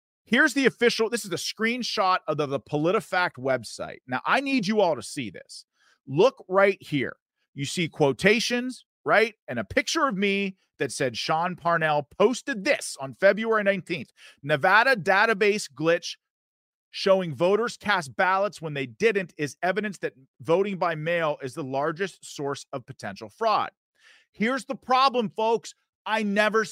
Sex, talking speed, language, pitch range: male, 155 wpm, English, 155-240 Hz